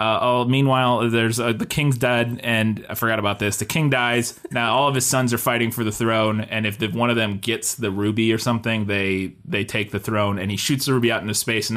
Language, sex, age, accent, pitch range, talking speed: English, male, 20-39, American, 105-125 Hz, 260 wpm